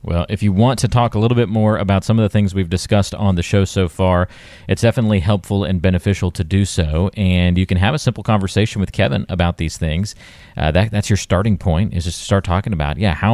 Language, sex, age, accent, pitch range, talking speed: English, male, 30-49, American, 90-105 Hz, 250 wpm